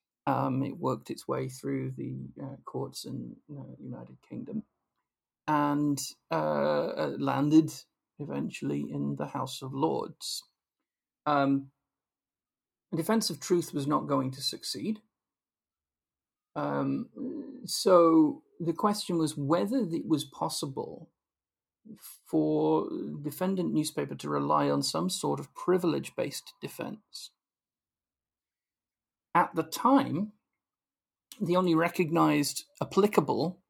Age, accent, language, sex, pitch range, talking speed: 40-59, British, English, male, 130-185 Hz, 105 wpm